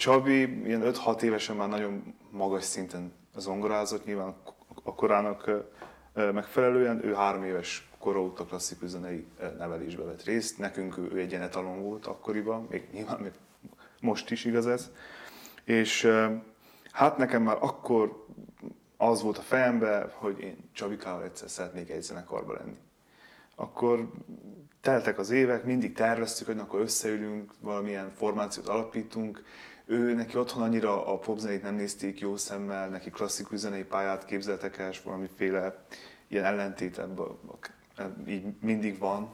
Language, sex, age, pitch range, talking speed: Hungarian, male, 20-39, 100-115 Hz, 130 wpm